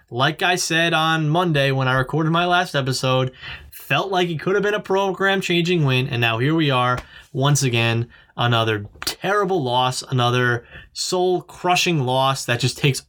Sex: male